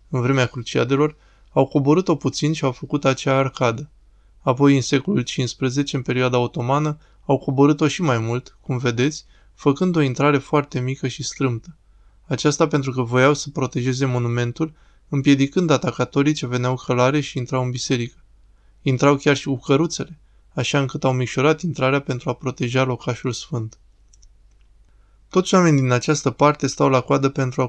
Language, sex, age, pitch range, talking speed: Romanian, male, 20-39, 125-145 Hz, 160 wpm